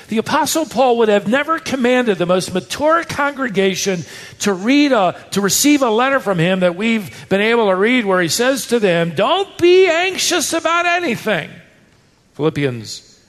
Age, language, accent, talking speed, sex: 50-69, English, American, 165 wpm, male